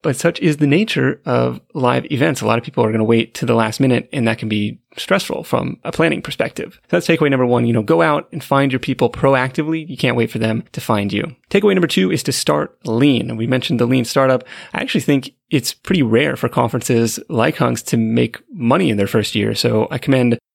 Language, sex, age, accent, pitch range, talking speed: English, male, 30-49, American, 120-155 Hz, 245 wpm